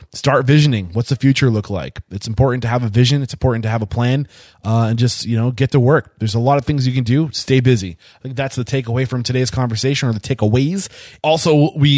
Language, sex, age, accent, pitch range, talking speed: English, male, 20-39, American, 110-135 Hz, 250 wpm